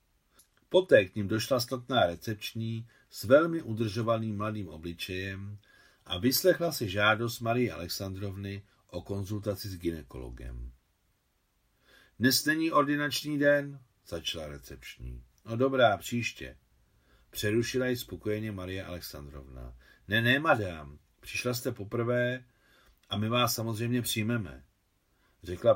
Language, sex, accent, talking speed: Czech, male, native, 110 wpm